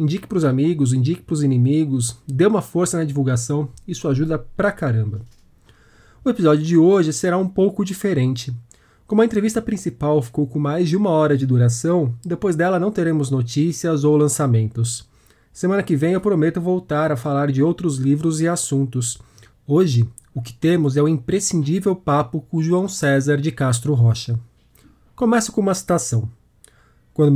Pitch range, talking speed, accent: 125-170 Hz, 165 wpm, Brazilian